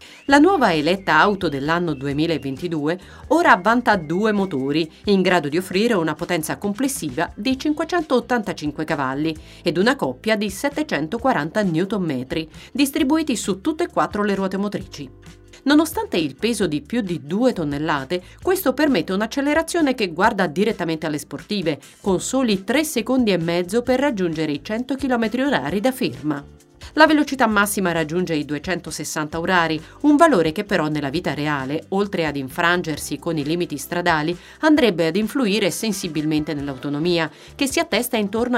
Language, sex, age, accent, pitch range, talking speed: Italian, female, 40-59, native, 160-235 Hz, 145 wpm